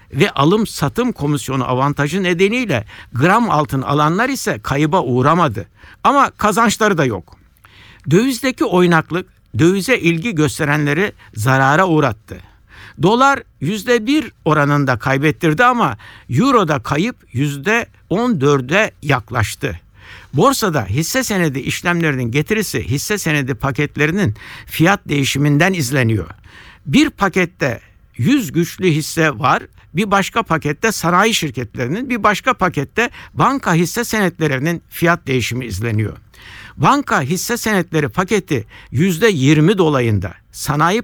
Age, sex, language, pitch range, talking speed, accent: 60-79, male, Turkish, 135-200 Hz, 100 wpm, native